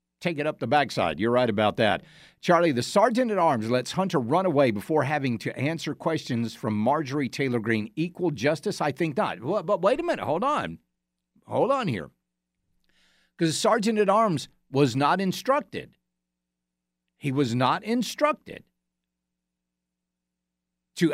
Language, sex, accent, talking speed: English, male, American, 155 wpm